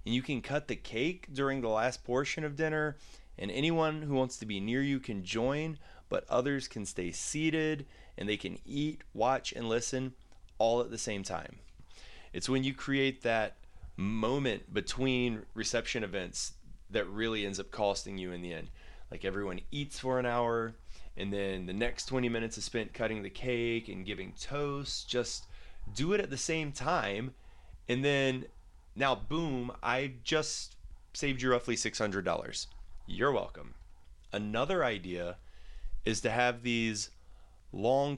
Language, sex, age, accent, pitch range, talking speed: English, male, 30-49, American, 100-130 Hz, 160 wpm